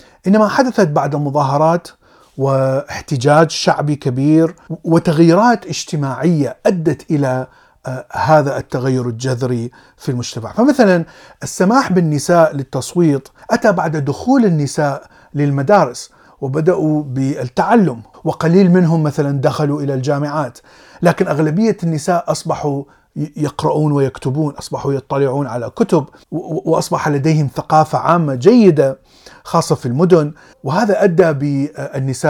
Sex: male